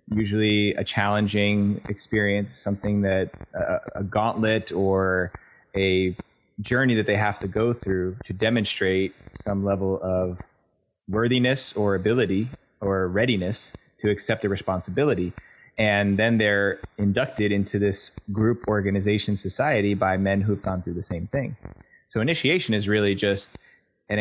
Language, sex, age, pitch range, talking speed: English, male, 20-39, 95-105 Hz, 135 wpm